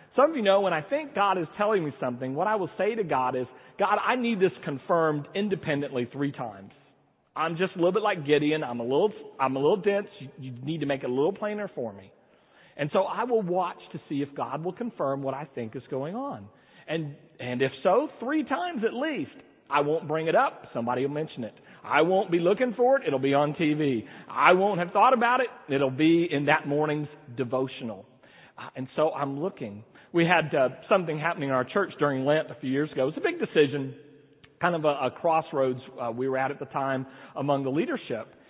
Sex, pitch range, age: male, 135-195 Hz, 40-59